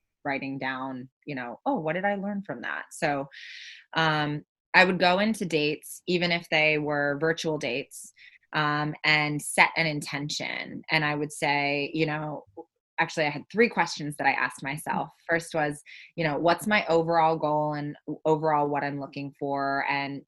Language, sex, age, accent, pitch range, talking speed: English, female, 20-39, American, 145-170 Hz, 175 wpm